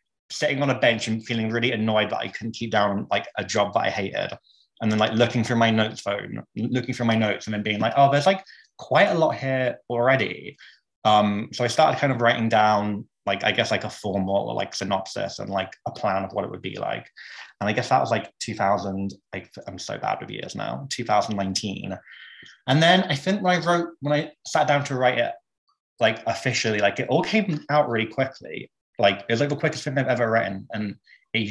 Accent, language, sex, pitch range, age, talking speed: British, English, male, 105-135 Hz, 20-39, 225 wpm